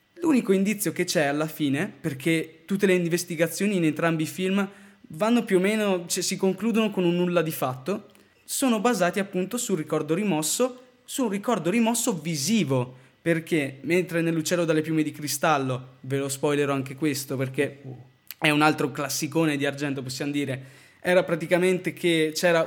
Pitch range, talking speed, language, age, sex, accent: 155-200 Hz, 160 wpm, Italian, 20-39, male, native